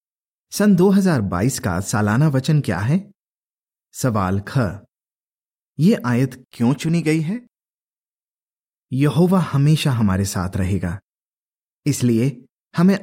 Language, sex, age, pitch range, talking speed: Hindi, male, 30-49, 110-165 Hz, 95 wpm